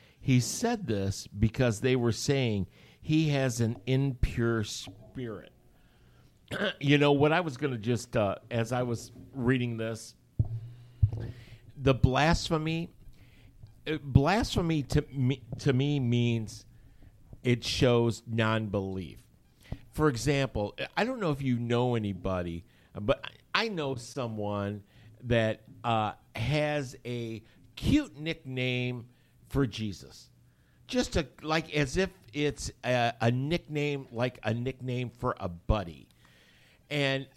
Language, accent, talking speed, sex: English, American, 120 wpm, male